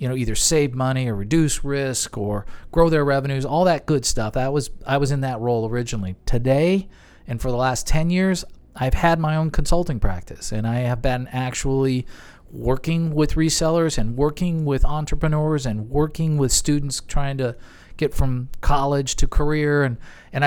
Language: English